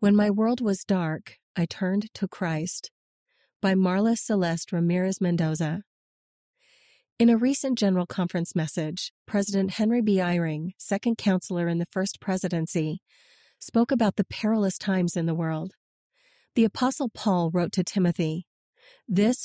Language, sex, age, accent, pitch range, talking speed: English, female, 40-59, American, 175-220 Hz, 140 wpm